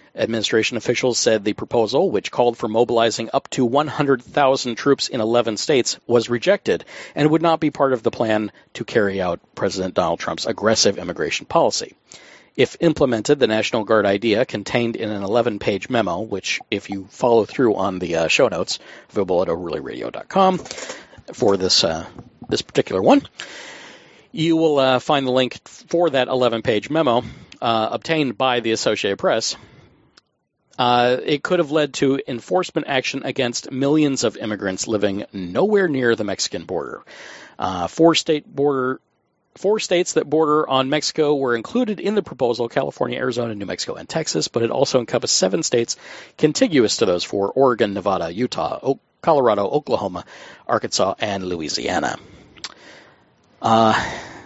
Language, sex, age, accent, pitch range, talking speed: English, male, 50-69, American, 110-150 Hz, 150 wpm